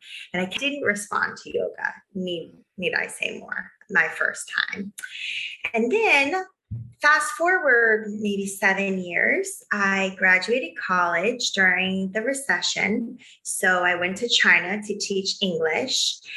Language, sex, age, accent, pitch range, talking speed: English, female, 20-39, American, 185-235 Hz, 130 wpm